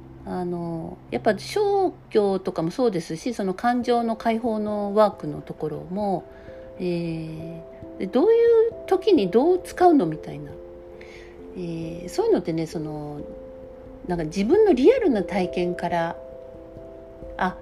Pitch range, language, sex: 160-240 Hz, Japanese, female